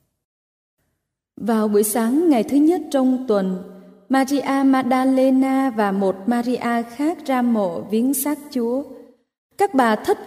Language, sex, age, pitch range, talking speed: Vietnamese, female, 20-39, 225-280 Hz, 130 wpm